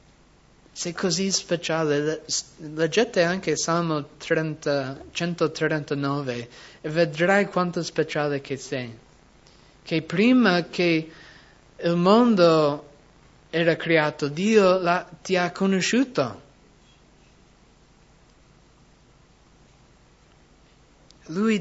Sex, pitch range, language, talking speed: male, 145-170 Hz, English, 80 wpm